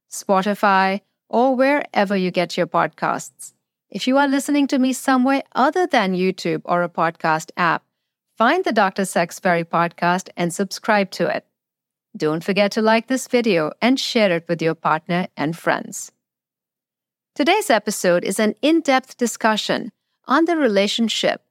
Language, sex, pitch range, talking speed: English, female, 180-255 Hz, 150 wpm